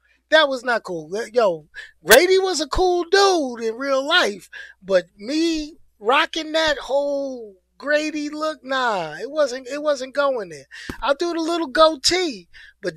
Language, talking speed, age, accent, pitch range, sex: English, 155 wpm, 30-49, American, 180-295 Hz, male